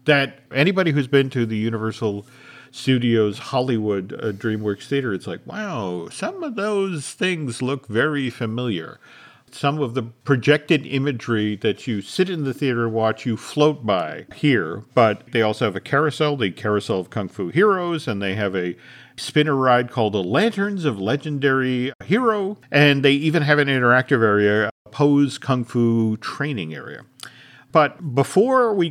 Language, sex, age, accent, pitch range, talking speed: English, male, 50-69, American, 110-145 Hz, 160 wpm